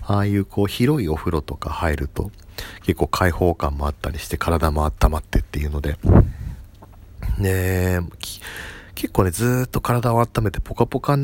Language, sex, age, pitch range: Japanese, male, 40-59, 80-100 Hz